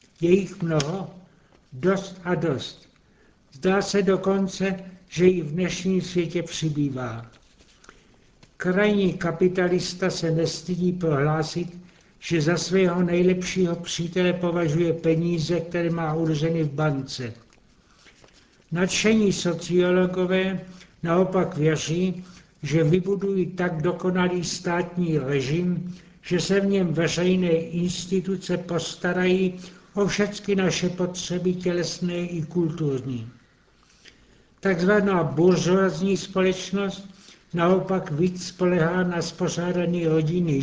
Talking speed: 95 wpm